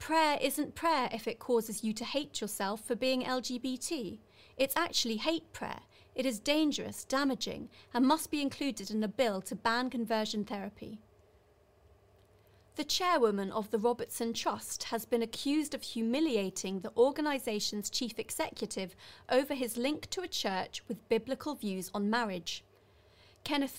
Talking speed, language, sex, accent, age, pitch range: 150 wpm, English, female, British, 30-49, 205-265 Hz